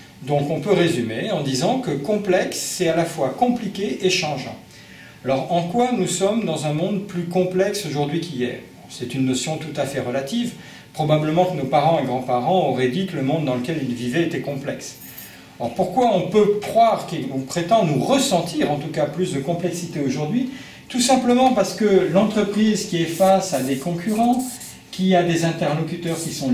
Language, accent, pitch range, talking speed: French, French, 150-205 Hz, 190 wpm